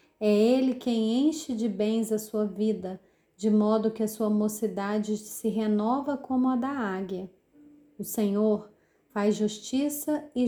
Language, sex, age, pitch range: Portuguese, female, 30-49, 205-255 Hz